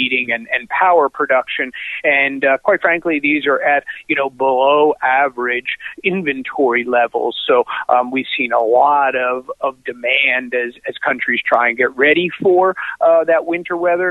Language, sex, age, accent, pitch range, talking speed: English, male, 40-59, American, 130-160 Hz, 165 wpm